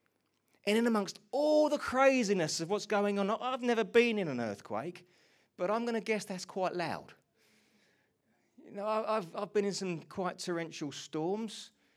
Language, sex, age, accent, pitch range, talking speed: English, male, 30-49, British, 150-220 Hz, 170 wpm